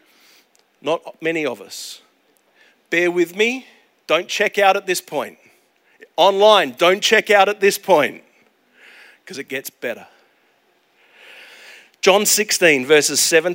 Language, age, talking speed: English, 40-59, 125 wpm